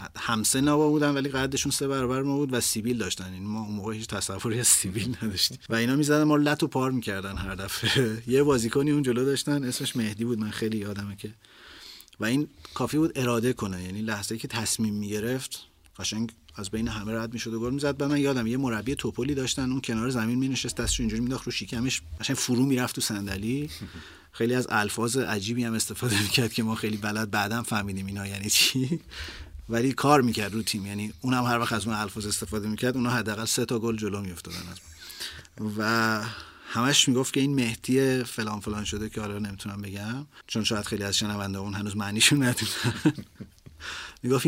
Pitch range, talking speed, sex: 105-130 Hz, 195 wpm, male